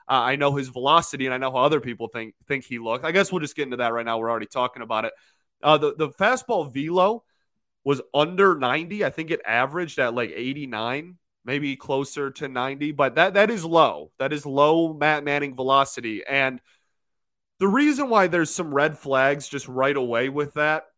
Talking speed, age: 205 wpm, 20-39